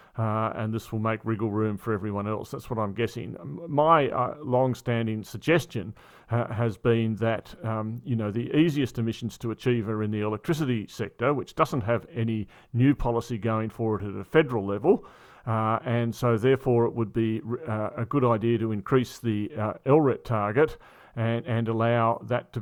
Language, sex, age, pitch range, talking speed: English, male, 40-59, 110-125 Hz, 185 wpm